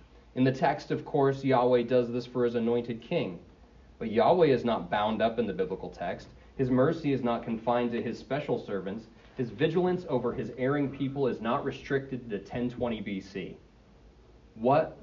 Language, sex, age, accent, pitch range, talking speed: English, male, 30-49, American, 95-135 Hz, 175 wpm